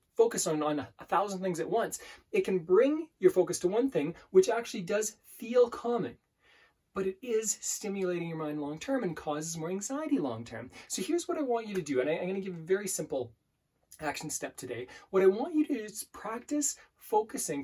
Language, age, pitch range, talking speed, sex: English, 20-39, 170-245 Hz, 215 wpm, male